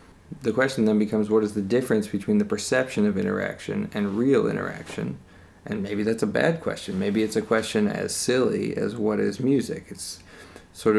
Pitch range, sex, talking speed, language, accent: 105-130 Hz, male, 185 wpm, English, American